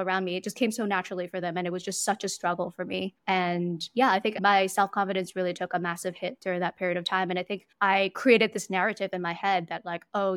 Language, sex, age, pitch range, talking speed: English, female, 10-29, 180-205 Hz, 270 wpm